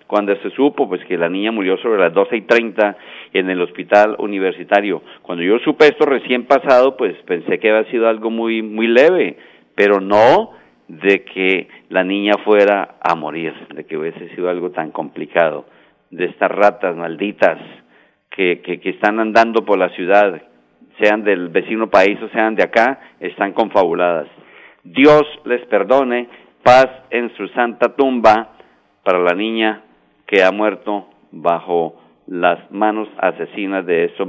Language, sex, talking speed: Spanish, male, 160 wpm